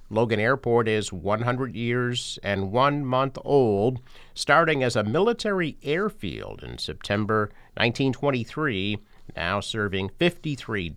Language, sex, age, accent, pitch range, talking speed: English, male, 50-69, American, 105-140 Hz, 110 wpm